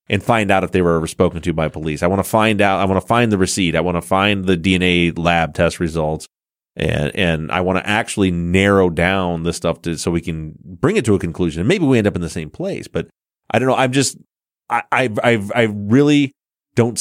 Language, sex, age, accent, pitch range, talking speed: English, male, 30-49, American, 85-115 Hz, 245 wpm